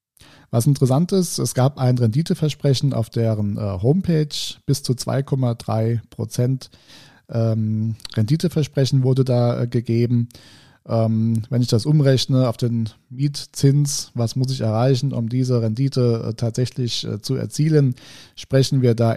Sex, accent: male, German